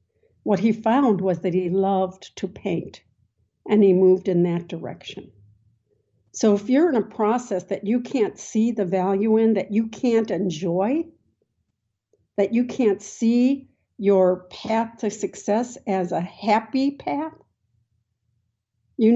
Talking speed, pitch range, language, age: 140 wpm, 180-230 Hz, English, 60-79